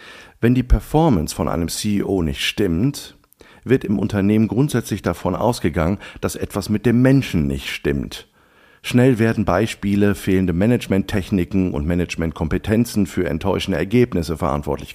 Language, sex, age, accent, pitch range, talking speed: German, male, 50-69, German, 80-115 Hz, 130 wpm